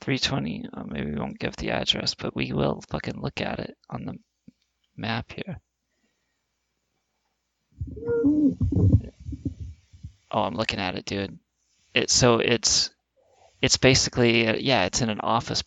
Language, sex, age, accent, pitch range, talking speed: English, male, 30-49, American, 90-110 Hz, 140 wpm